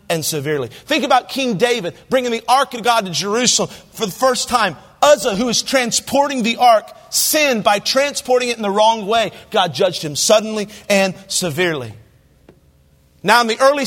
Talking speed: 175 wpm